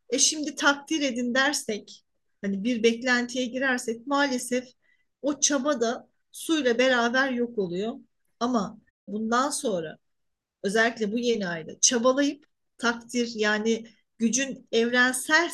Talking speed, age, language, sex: 110 wpm, 40-59, Turkish, female